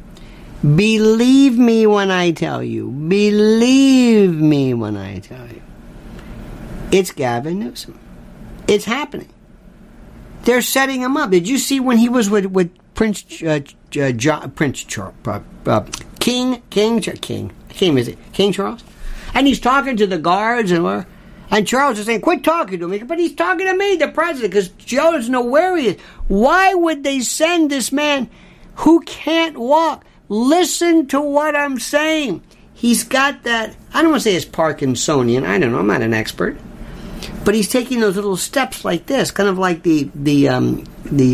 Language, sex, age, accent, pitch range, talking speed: English, male, 50-69, American, 185-290 Hz, 175 wpm